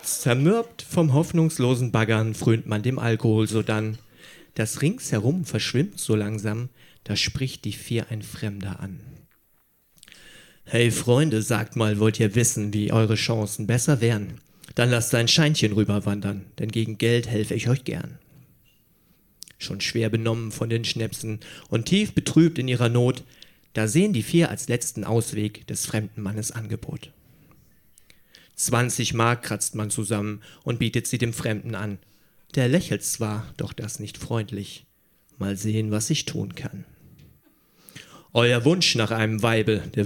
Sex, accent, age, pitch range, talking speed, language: male, German, 40-59, 110-130 Hz, 145 wpm, German